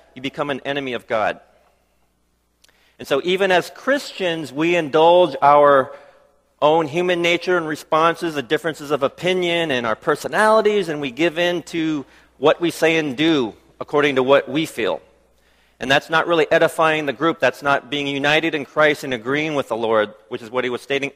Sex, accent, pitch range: male, American, 135-180 Hz